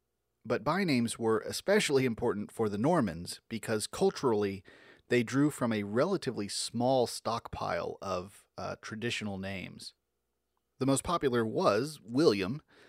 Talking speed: 120 wpm